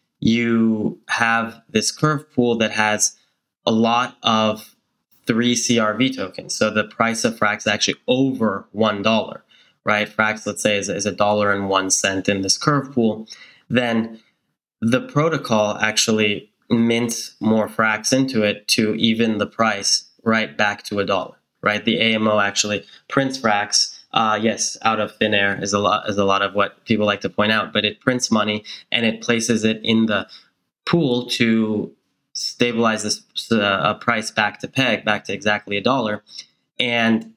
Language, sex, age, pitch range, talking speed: English, male, 10-29, 105-120 Hz, 170 wpm